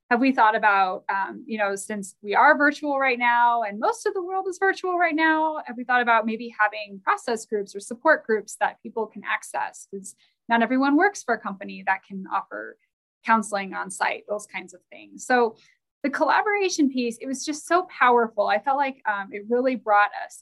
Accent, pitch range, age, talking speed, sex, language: American, 205-265 Hz, 20-39, 210 wpm, female, English